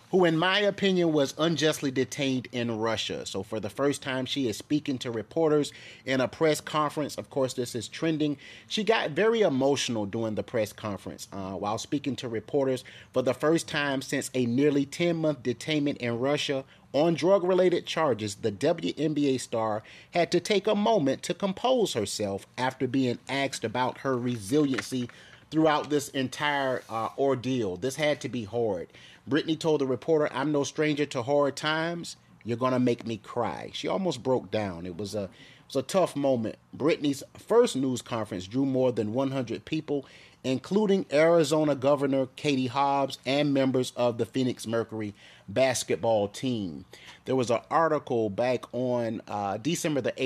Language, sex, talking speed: English, male, 165 wpm